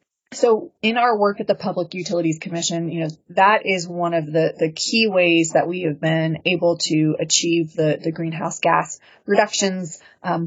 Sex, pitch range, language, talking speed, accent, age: female, 160-180 Hz, English, 185 wpm, American, 20-39